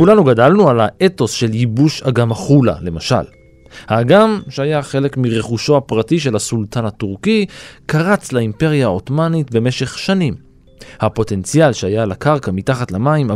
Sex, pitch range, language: male, 105-145 Hz, Hebrew